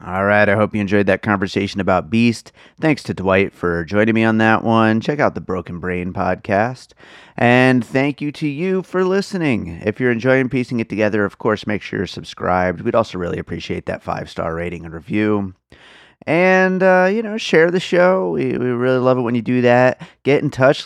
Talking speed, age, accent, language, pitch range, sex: 205 wpm, 30-49, American, English, 95-125 Hz, male